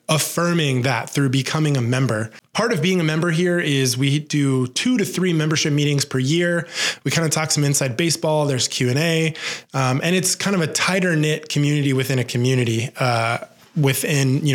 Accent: American